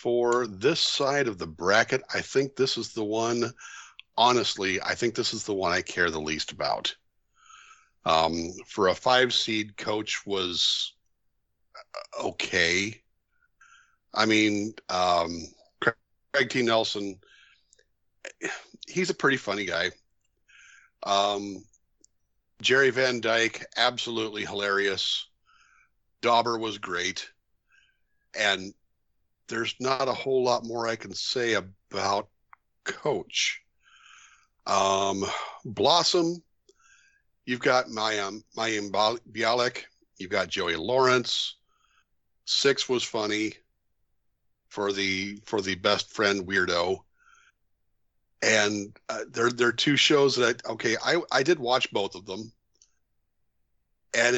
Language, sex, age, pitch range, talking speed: English, male, 50-69, 100-125 Hz, 115 wpm